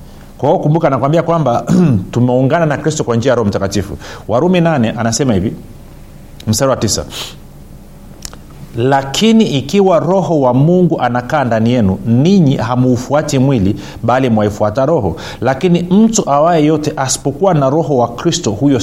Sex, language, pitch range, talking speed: male, Swahili, 110-160 Hz, 135 wpm